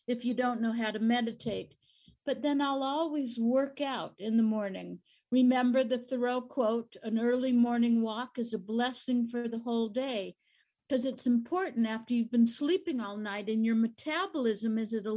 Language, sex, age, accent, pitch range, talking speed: English, female, 60-79, American, 225-265 Hz, 180 wpm